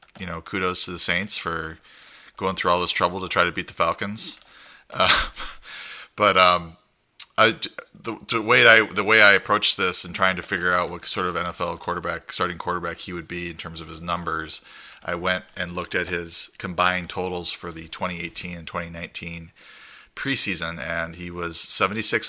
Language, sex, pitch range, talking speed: English, male, 85-95 Hz, 175 wpm